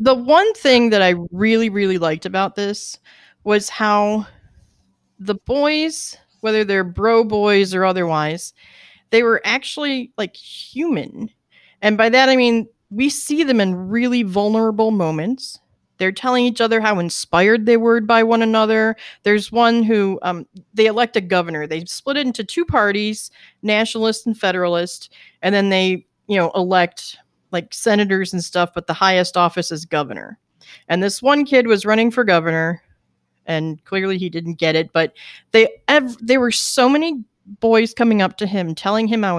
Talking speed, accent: 170 wpm, American